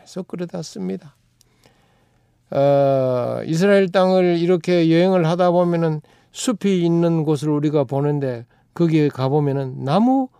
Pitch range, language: 135-185 Hz, Korean